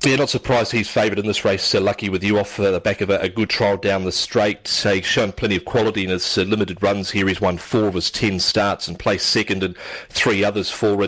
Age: 40-59